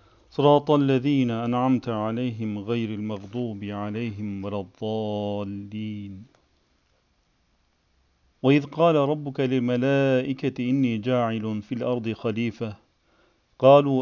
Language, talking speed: Turkish, 80 wpm